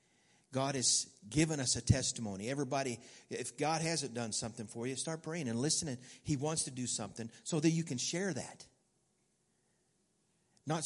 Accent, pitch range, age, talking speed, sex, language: American, 125-170 Hz, 50-69, 165 wpm, male, English